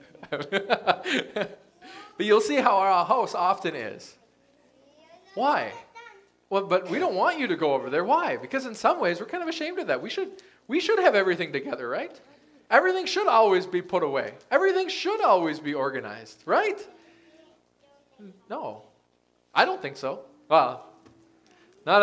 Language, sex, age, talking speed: English, male, 20-39, 155 wpm